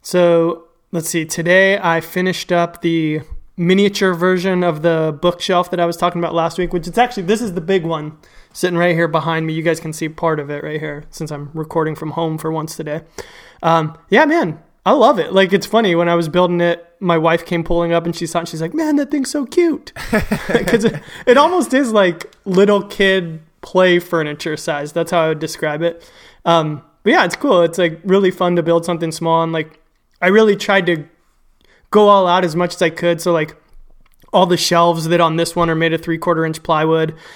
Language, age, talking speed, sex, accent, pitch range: English, 20-39, 220 wpm, male, American, 160-185 Hz